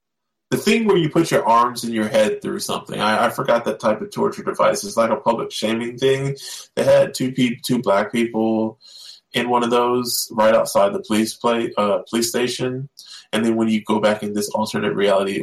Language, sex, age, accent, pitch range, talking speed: English, male, 20-39, American, 105-125 Hz, 210 wpm